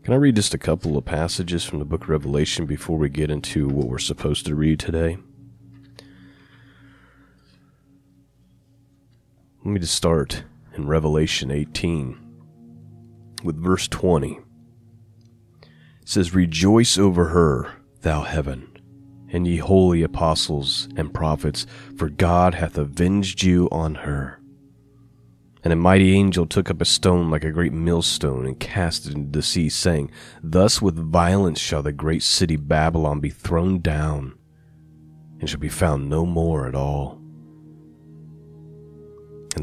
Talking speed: 140 wpm